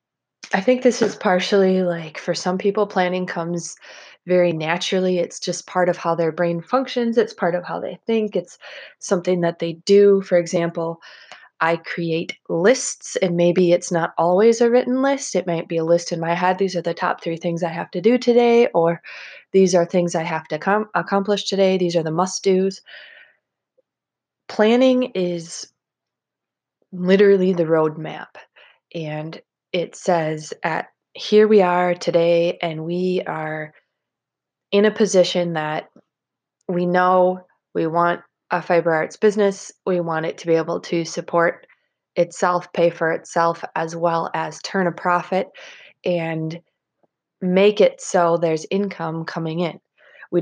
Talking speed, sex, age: 160 wpm, female, 20-39